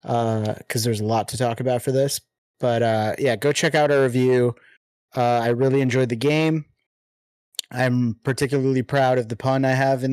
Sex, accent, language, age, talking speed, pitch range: male, American, English, 30-49, 195 wpm, 120-140 Hz